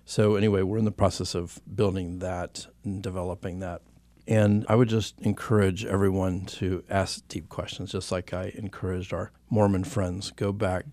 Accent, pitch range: American, 90-105 Hz